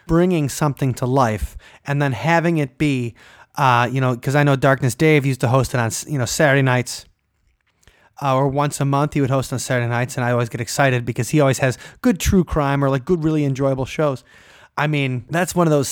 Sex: male